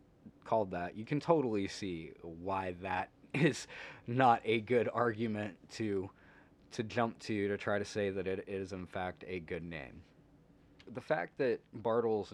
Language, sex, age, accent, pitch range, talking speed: English, male, 20-39, American, 95-125 Hz, 160 wpm